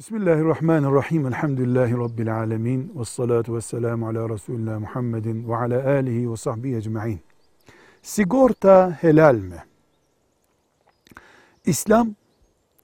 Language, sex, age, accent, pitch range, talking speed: Turkish, male, 60-79, native, 125-185 Hz, 90 wpm